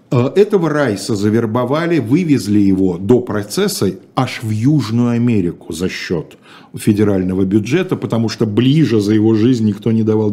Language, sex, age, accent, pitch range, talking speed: Russian, male, 50-69, native, 105-150 Hz, 140 wpm